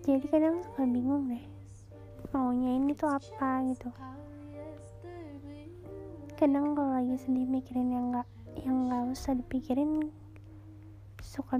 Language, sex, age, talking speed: Indonesian, female, 20-39, 115 wpm